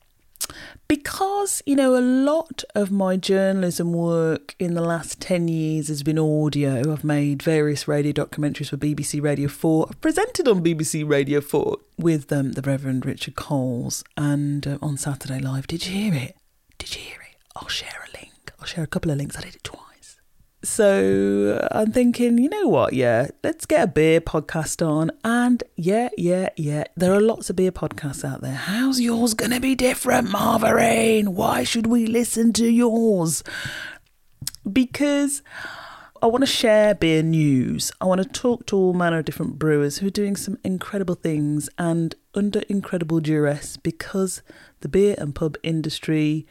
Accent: British